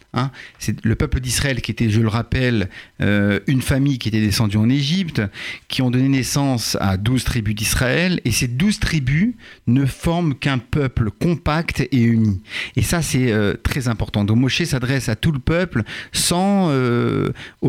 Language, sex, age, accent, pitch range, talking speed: French, male, 50-69, French, 110-140 Hz, 175 wpm